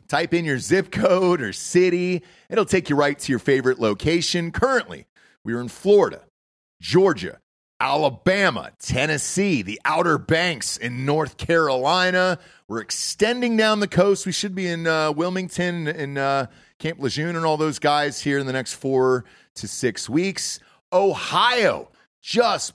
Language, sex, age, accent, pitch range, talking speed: English, male, 40-59, American, 145-195 Hz, 150 wpm